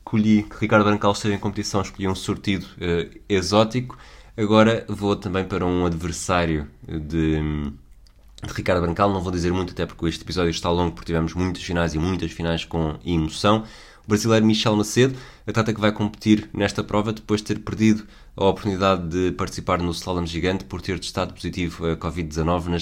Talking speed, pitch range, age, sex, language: 185 wpm, 85-110 Hz, 20-39, male, Portuguese